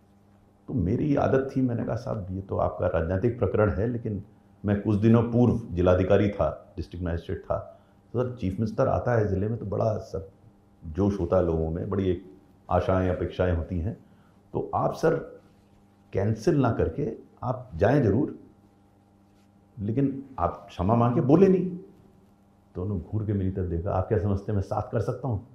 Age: 50-69